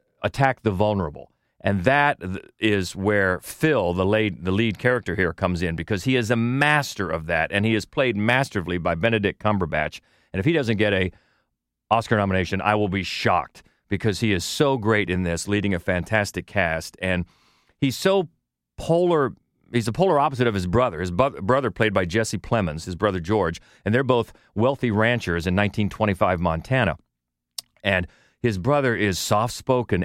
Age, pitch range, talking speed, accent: 40-59, 95-120 Hz, 175 wpm, American